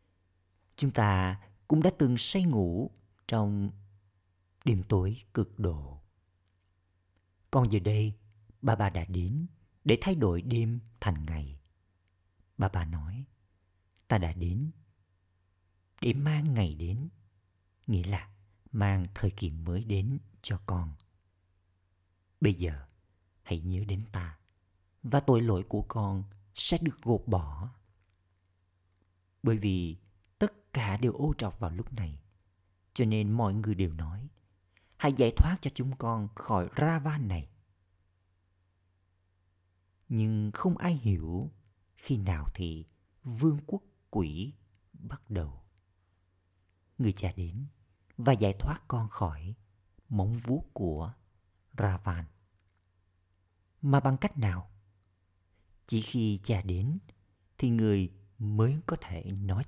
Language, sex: Vietnamese, male